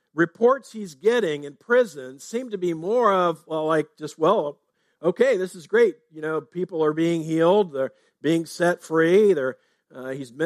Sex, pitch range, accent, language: male, 155-200 Hz, American, English